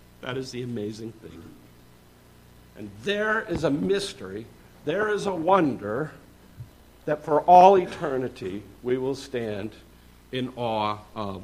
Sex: male